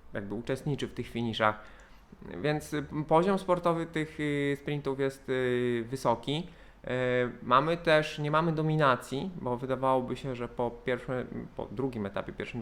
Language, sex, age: Polish, male, 20-39